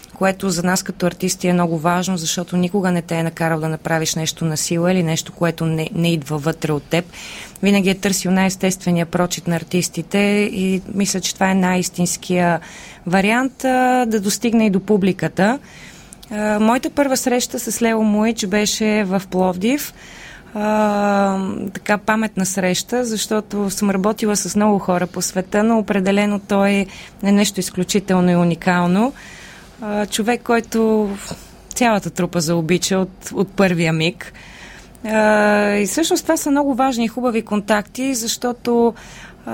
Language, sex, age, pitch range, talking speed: Bulgarian, female, 20-39, 180-220 Hz, 150 wpm